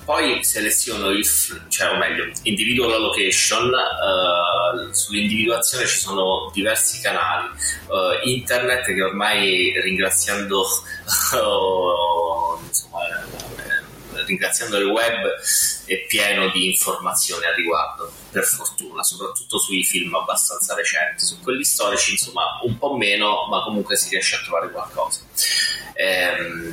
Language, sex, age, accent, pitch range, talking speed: Italian, male, 30-49, native, 95-125 Hz, 125 wpm